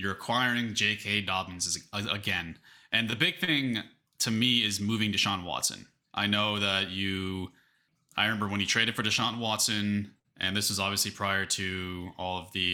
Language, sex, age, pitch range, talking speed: English, male, 20-39, 100-120 Hz, 170 wpm